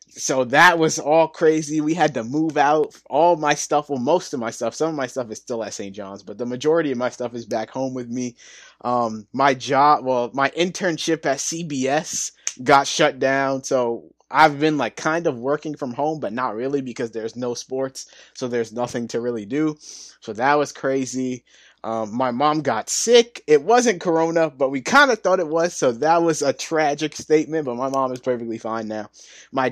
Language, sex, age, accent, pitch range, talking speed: English, male, 20-39, American, 120-150 Hz, 210 wpm